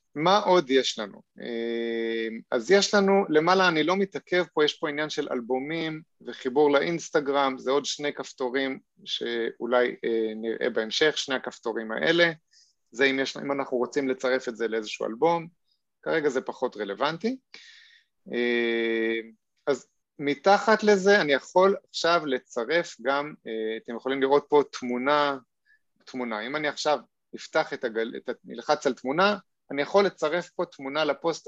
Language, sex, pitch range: Hebrew, male, 125-175 Hz